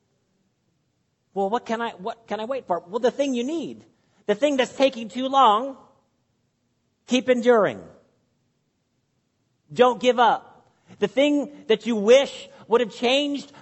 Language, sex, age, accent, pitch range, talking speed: English, male, 50-69, American, 155-235 Hz, 145 wpm